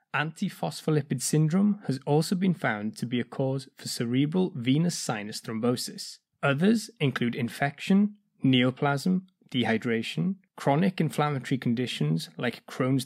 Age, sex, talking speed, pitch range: 20-39, male, 120 wpm, 130-185 Hz